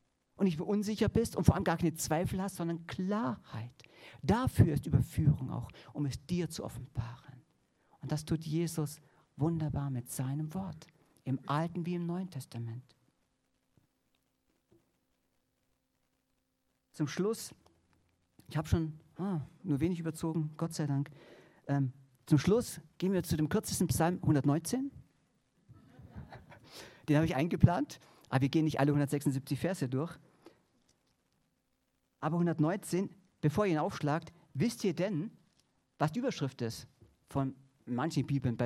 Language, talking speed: German, 135 wpm